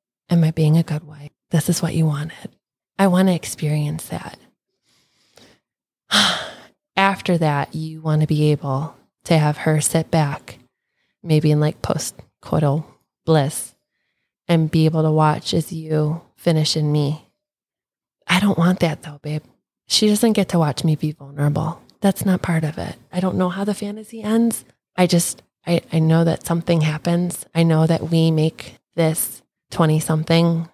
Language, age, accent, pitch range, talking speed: English, 20-39, American, 150-170 Hz, 170 wpm